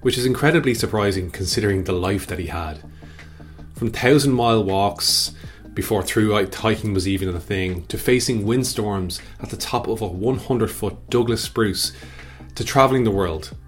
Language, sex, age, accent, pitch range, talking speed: English, male, 30-49, Irish, 90-115 Hz, 155 wpm